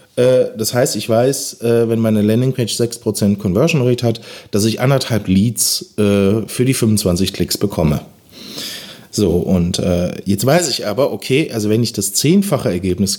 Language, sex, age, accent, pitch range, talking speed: German, male, 40-59, German, 100-145 Hz, 150 wpm